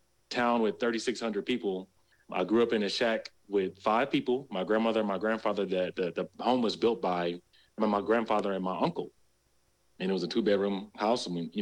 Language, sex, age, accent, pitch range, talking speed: English, male, 30-49, American, 95-120 Hz, 200 wpm